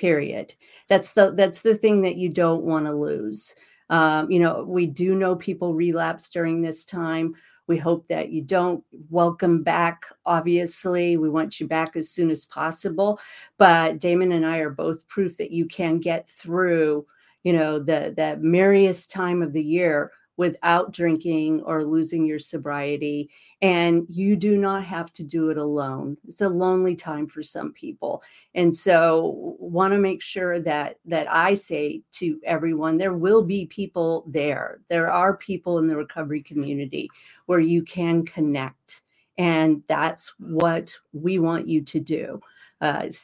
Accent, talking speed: American, 165 wpm